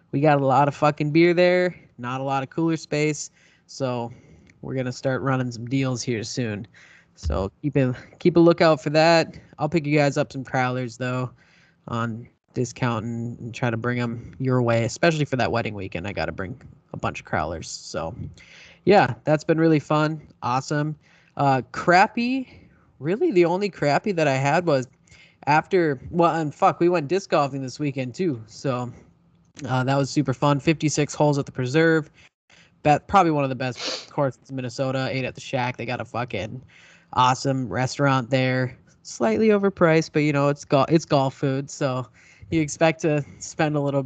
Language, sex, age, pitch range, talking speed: English, male, 10-29, 130-165 Hz, 190 wpm